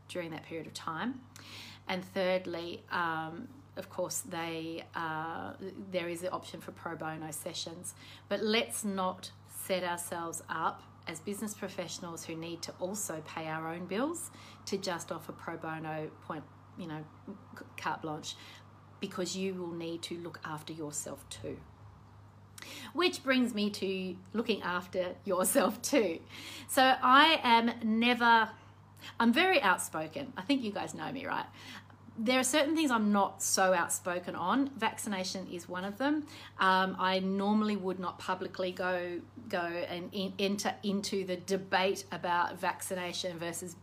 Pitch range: 170-205 Hz